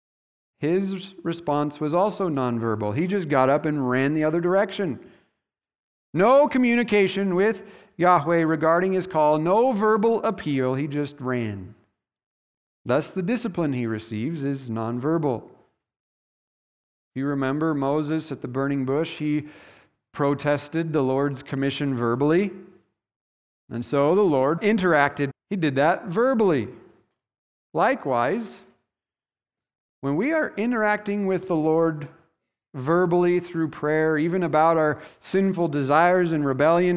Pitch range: 140-200 Hz